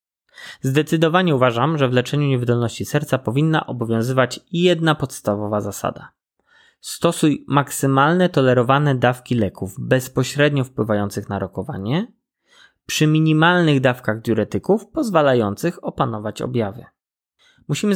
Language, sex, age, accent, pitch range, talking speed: Polish, male, 20-39, native, 115-155 Hz, 95 wpm